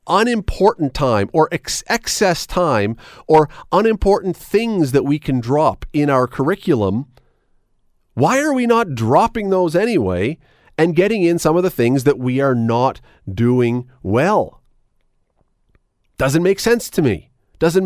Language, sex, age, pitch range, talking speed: English, male, 40-59, 115-180 Hz, 140 wpm